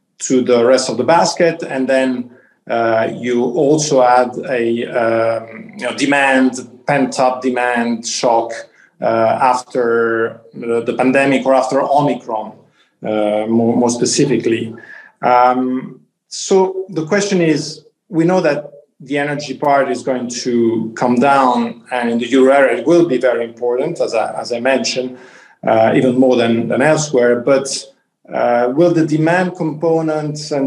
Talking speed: 150 wpm